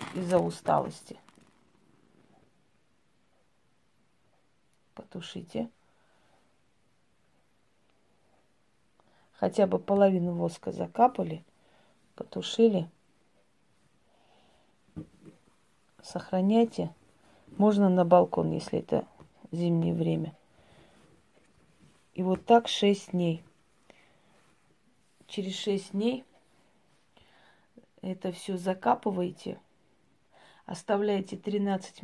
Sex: female